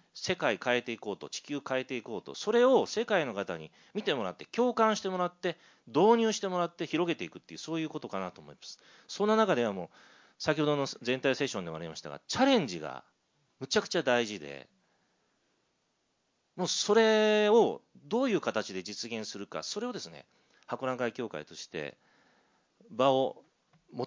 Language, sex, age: Japanese, male, 40-59